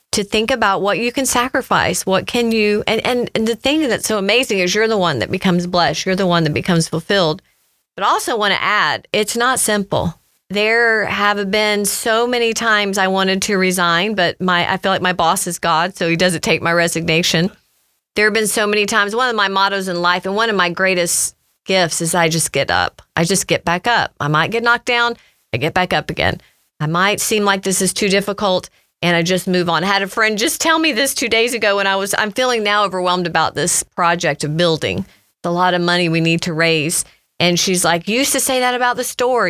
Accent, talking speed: American, 240 wpm